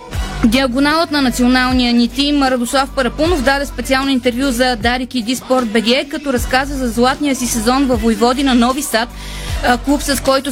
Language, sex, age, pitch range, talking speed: Bulgarian, female, 20-39, 245-280 Hz, 160 wpm